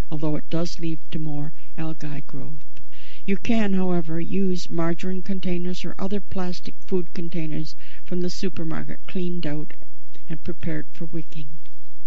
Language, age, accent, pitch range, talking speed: English, 60-79, American, 155-190 Hz, 140 wpm